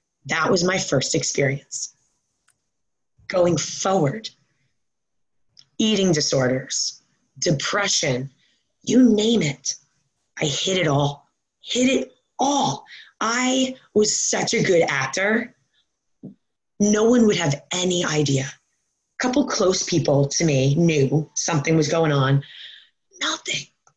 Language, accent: English, American